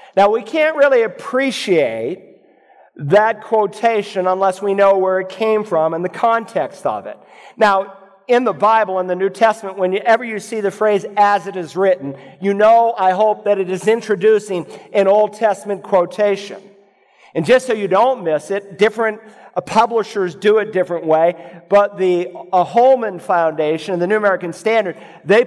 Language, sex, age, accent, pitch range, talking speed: English, male, 50-69, American, 190-220 Hz, 165 wpm